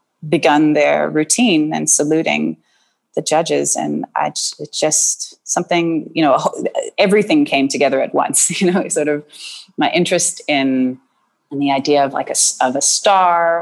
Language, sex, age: English, female, 30-49